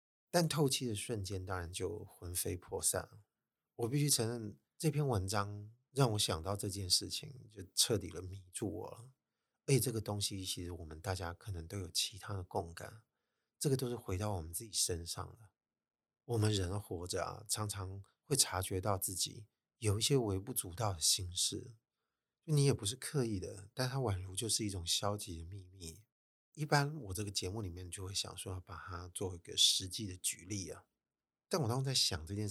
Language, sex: Chinese, male